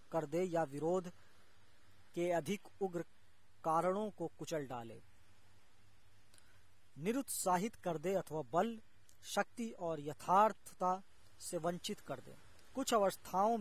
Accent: native